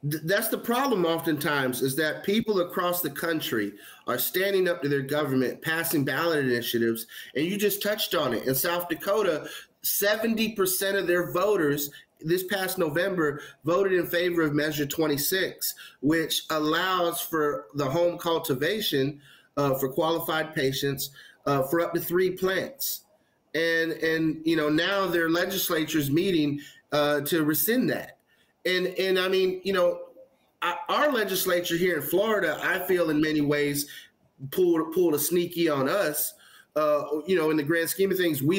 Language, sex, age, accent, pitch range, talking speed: English, male, 30-49, American, 150-190 Hz, 160 wpm